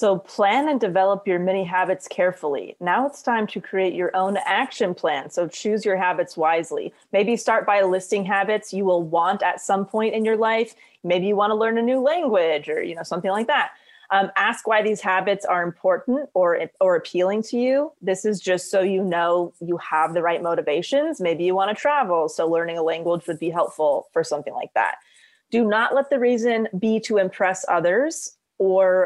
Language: English